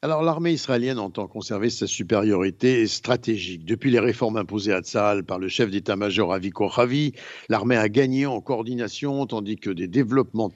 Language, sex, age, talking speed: Italian, male, 60-79, 170 wpm